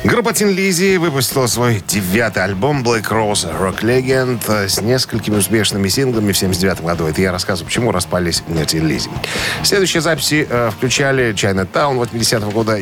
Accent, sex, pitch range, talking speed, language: native, male, 90-120 Hz, 155 wpm, Russian